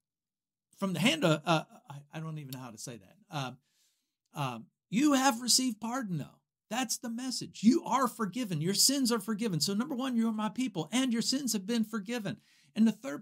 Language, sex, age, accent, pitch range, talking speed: English, male, 50-69, American, 160-230 Hz, 210 wpm